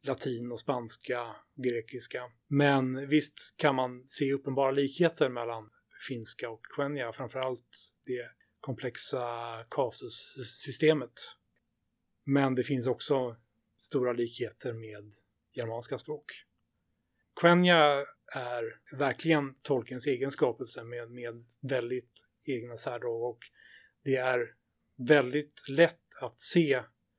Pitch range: 120-145 Hz